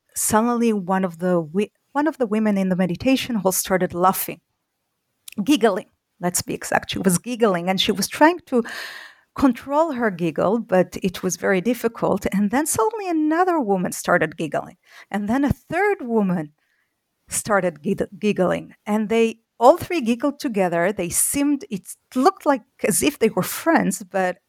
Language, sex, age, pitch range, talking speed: English, female, 40-59, 185-245 Hz, 165 wpm